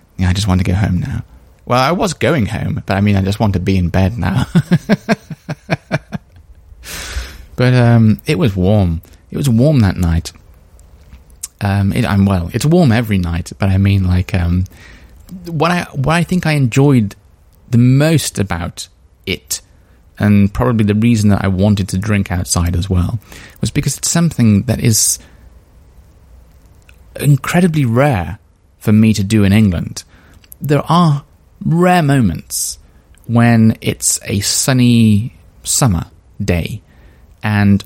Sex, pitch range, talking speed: male, 85-115 Hz, 150 wpm